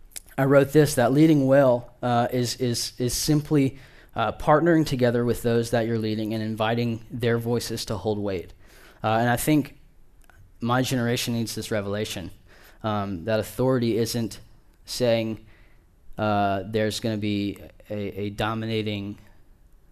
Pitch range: 95-115 Hz